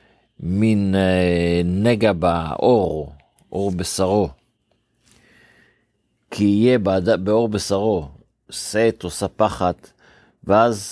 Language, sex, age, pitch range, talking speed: Hebrew, male, 50-69, 90-115 Hz, 70 wpm